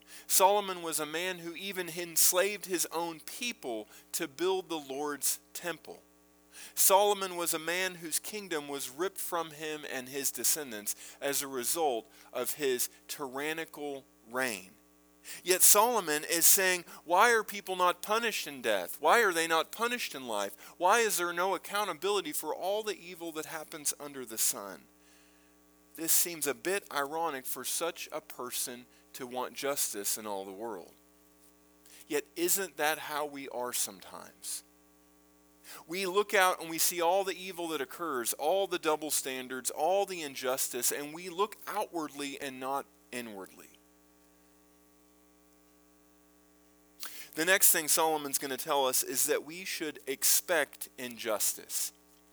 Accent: American